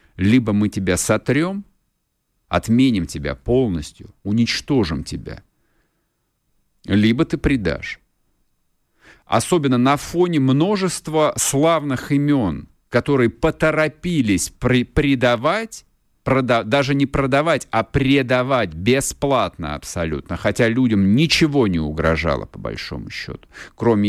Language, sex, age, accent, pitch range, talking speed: Russian, male, 50-69, native, 95-130 Hz, 90 wpm